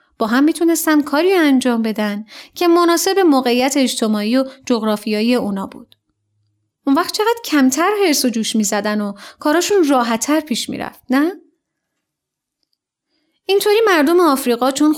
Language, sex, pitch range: Persian, female, 235-325 Hz